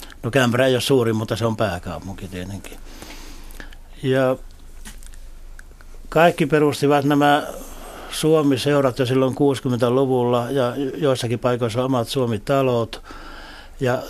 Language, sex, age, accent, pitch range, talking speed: Finnish, male, 60-79, native, 125-145 Hz, 100 wpm